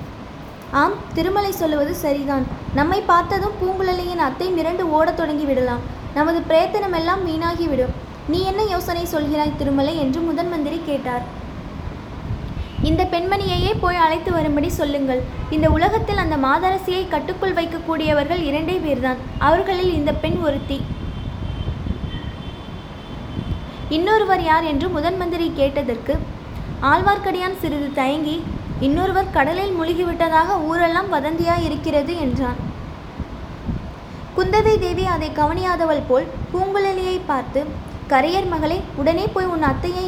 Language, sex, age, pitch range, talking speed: Tamil, female, 20-39, 290-360 Hz, 105 wpm